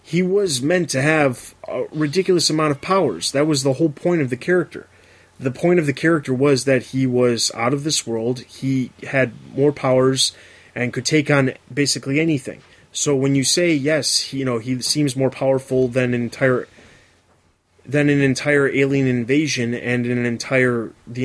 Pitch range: 125-150 Hz